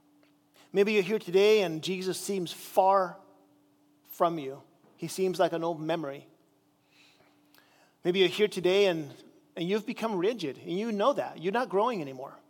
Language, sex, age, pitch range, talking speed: English, male, 40-59, 155-210 Hz, 160 wpm